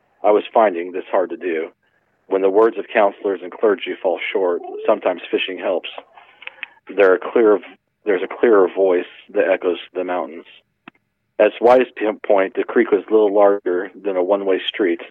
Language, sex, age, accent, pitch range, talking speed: English, male, 40-59, American, 90-115 Hz, 170 wpm